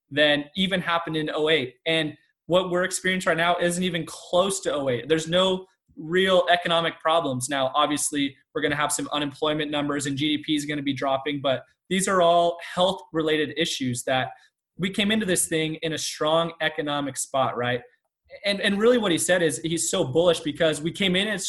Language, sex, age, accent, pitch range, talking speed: English, male, 20-39, American, 145-180 Hz, 195 wpm